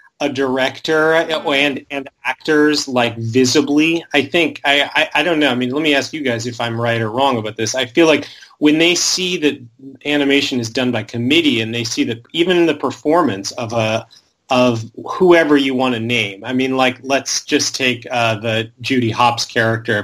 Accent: American